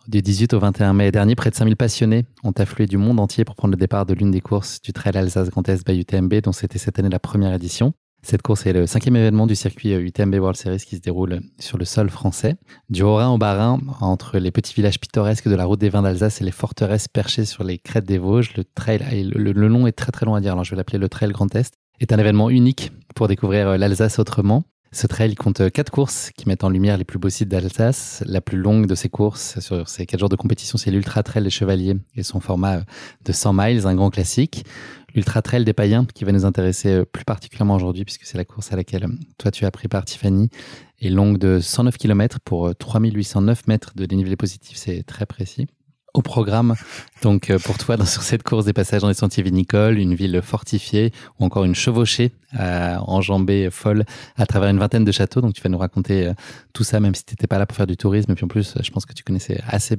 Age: 20-39